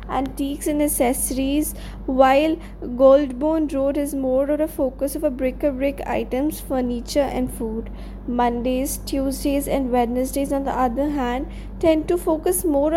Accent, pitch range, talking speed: Indian, 255-300 Hz, 145 wpm